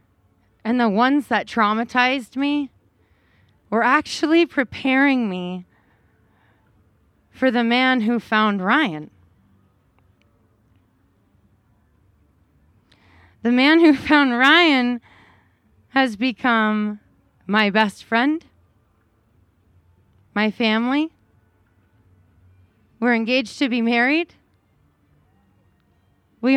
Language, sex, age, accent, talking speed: English, female, 20-39, American, 75 wpm